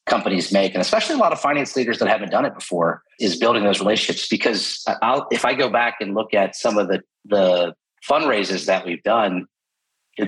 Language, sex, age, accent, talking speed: English, male, 40-59, American, 210 wpm